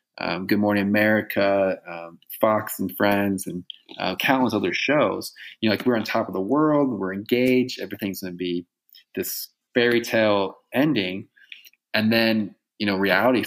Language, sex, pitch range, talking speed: English, male, 95-110 Hz, 165 wpm